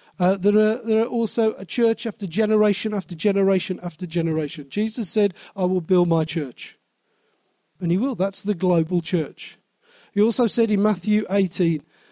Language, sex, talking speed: English, male, 165 wpm